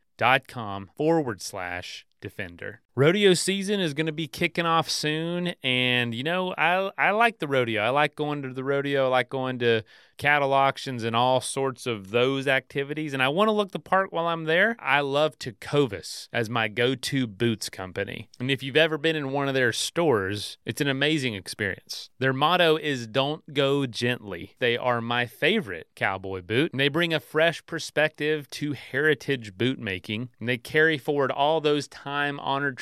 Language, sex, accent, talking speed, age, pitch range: English, male, American, 180 wpm, 30-49, 120-150 Hz